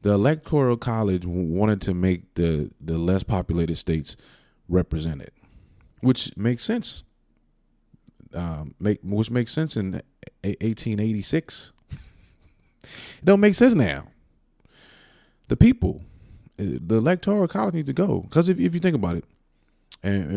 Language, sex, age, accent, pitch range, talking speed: English, male, 20-39, American, 90-110 Hz, 135 wpm